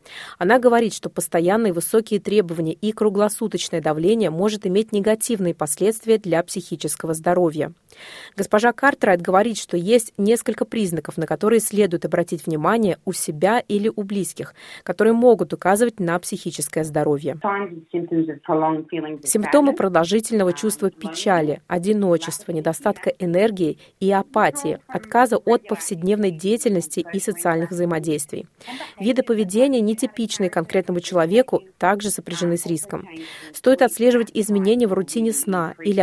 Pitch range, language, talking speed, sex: 170-215 Hz, Russian, 120 wpm, female